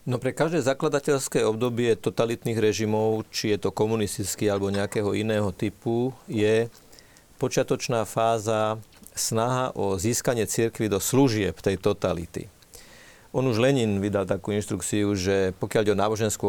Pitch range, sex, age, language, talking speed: 100-115 Hz, male, 40-59, Slovak, 135 wpm